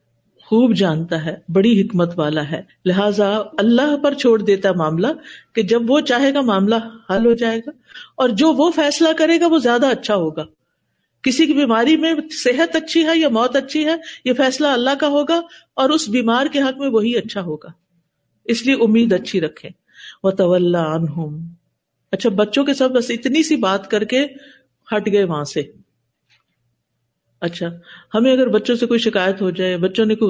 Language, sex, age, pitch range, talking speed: Urdu, female, 50-69, 180-255 Hz, 180 wpm